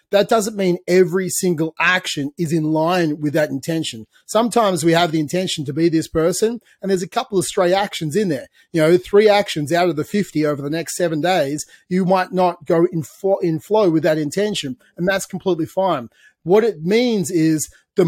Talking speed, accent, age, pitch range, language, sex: 205 wpm, Australian, 30-49, 155-190 Hz, English, male